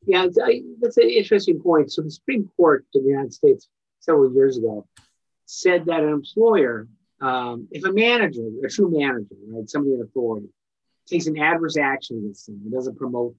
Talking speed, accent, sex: 180 wpm, American, male